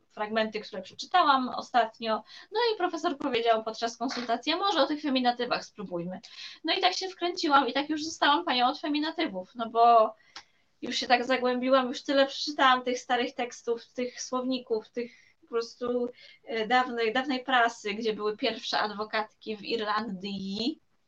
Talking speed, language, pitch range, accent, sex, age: 150 wpm, Polish, 220-275 Hz, native, female, 20-39